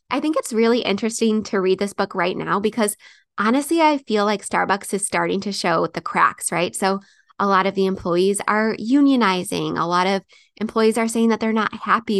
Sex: female